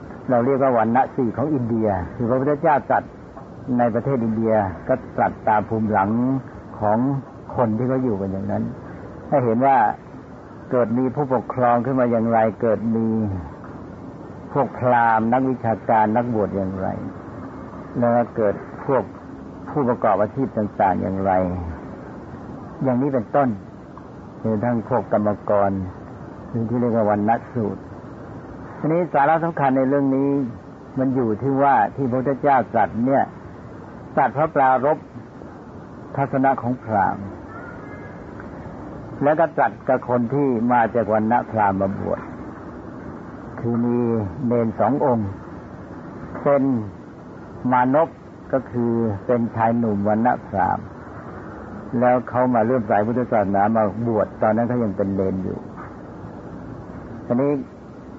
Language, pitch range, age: Thai, 105-130 Hz, 60-79